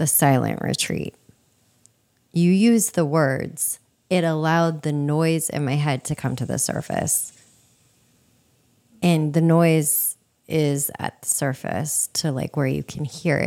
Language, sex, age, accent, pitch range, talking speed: English, female, 30-49, American, 125-155 Hz, 140 wpm